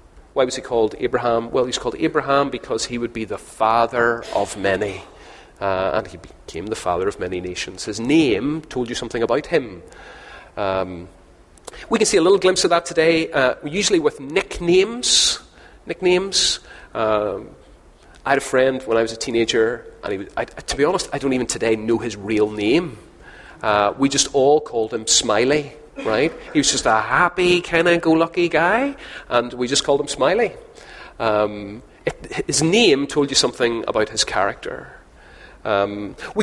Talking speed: 180 wpm